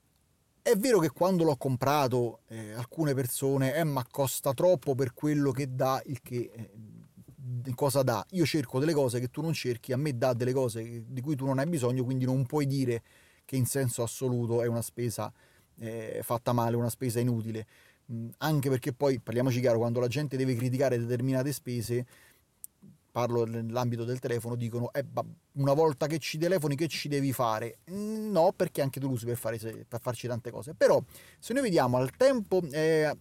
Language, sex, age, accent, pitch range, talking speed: Italian, male, 30-49, native, 120-155 Hz, 180 wpm